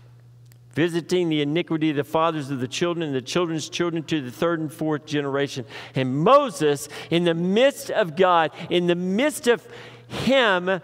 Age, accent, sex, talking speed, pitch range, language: 50-69, American, male, 170 wpm, 120-170 Hz, English